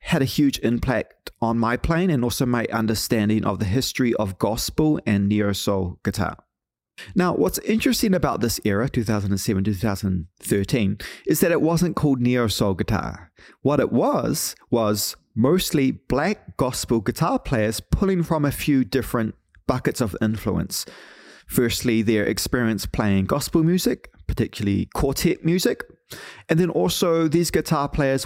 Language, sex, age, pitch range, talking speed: English, male, 30-49, 105-140 Hz, 140 wpm